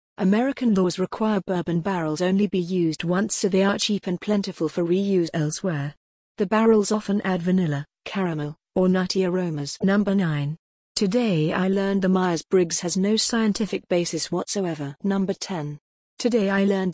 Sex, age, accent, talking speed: female, 40-59, British, 155 wpm